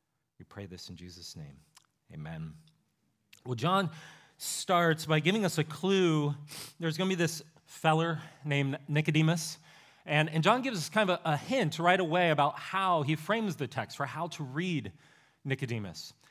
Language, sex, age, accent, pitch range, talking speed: English, male, 30-49, American, 140-190 Hz, 170 wpm